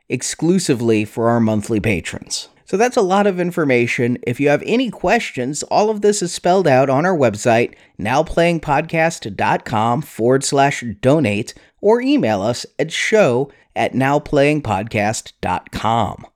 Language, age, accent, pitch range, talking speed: English, 30-49, American, 120-170 Hz, 130 wpm